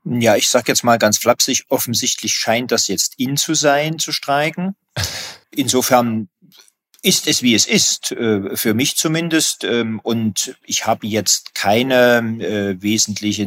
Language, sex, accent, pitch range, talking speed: German, male, German, 95-115 Hz, 140 wpm